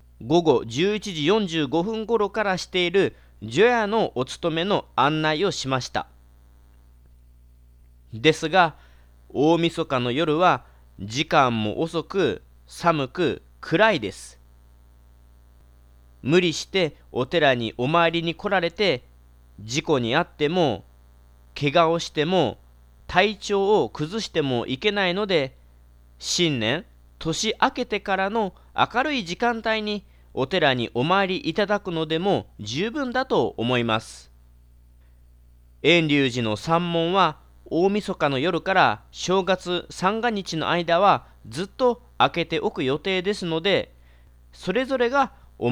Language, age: Japanese, 40-59